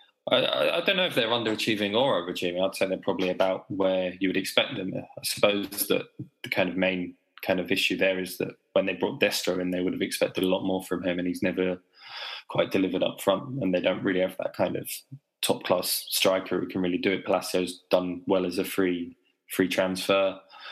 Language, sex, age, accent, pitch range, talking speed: English, male, 20-39, British, 90-95 Hz, 220 wpm